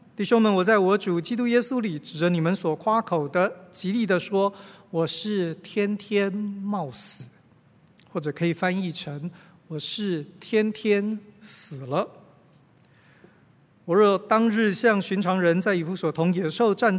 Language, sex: Chinese, male